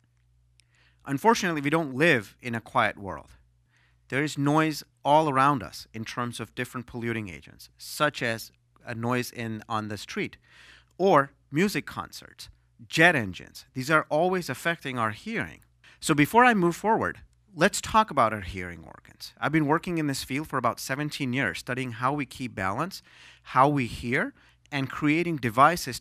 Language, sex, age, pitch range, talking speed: English, male, 30-49, 110-155 Hz, 160 wpm